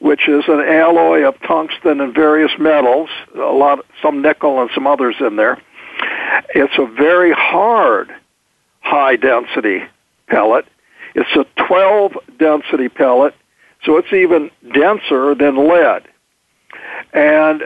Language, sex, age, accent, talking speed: English, male, 60-79, American, 125 wpm